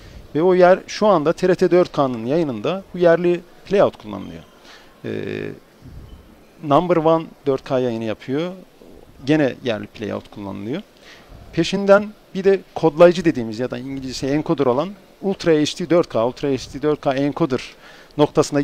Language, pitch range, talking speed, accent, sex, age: Turkish, 130-175 Hz, 125 wpm, native, male, 50-69